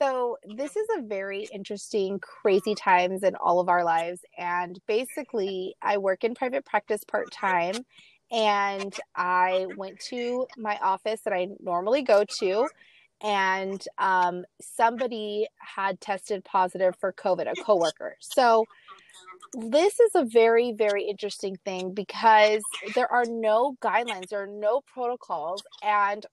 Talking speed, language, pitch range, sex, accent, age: 140 wpm, English, 195-240 Hz, female, American, 30-49